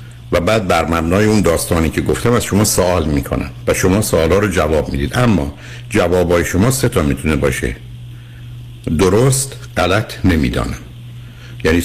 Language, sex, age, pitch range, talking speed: Persian, male, 60-79, 75-120 Hz, 155 wpm